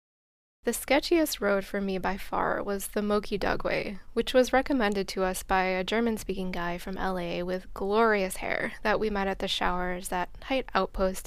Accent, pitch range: American, 190-225 Hz